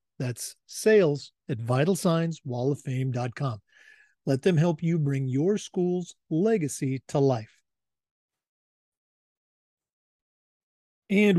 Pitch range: 130-165 Hz